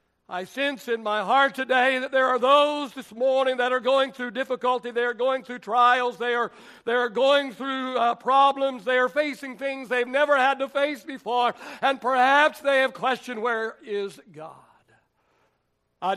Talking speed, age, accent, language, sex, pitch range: 180 wpm, 60-79, American, English, male, 190-270 Hz